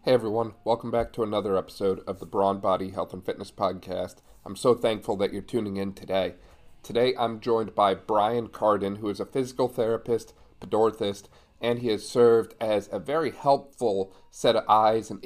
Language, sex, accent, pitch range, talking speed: English, male, American, 100-120 Hz, 185 wpm